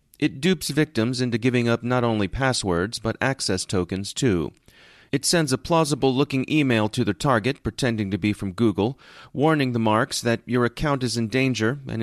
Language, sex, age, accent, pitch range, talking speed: English, male, 30-49, American, 105-130 Hz, 180 wpm